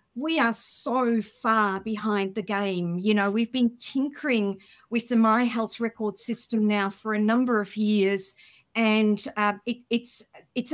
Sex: female